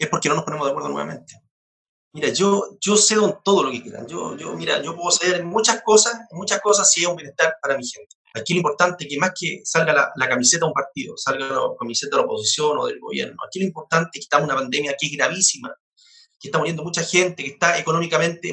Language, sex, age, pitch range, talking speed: Spanish, male, 30-49, 165-215 Hz, 255 wpm